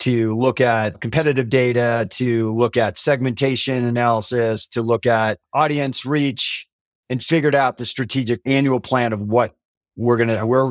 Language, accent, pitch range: English, American, 115-135 Hz